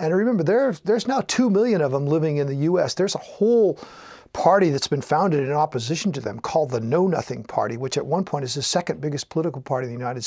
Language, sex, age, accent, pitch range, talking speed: English, male, 50-69, American, 150-205 Hz, 240 wpm